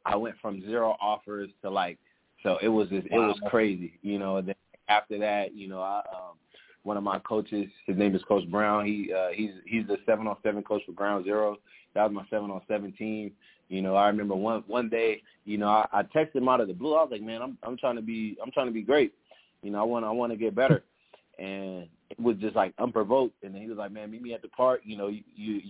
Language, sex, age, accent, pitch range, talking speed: English, male, 20-39, American, 100-115 Hz, 260 wpm